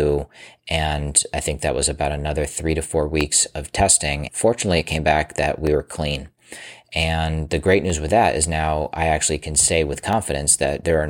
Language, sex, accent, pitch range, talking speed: English, male, American, 75-80 Hz, 205 wpm